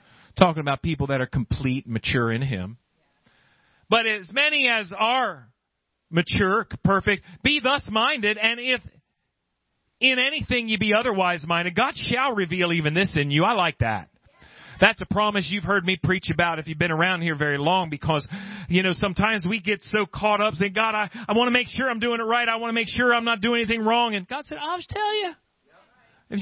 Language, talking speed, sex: English, 205 wpm, male